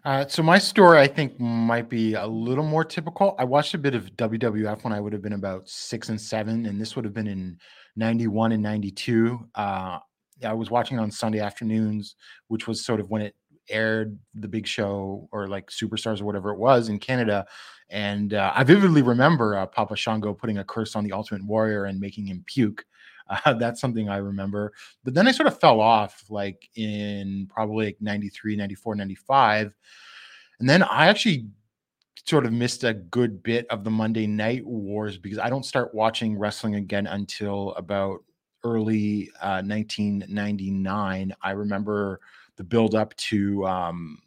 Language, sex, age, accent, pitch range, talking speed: English, male, 30-49, American, 100-115 Hz, 180 wpm